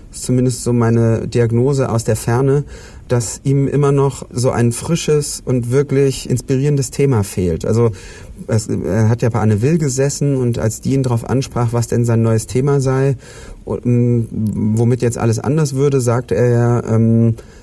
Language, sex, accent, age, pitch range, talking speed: German, male, German, 40-59, 110-125 Hz, 165 wpm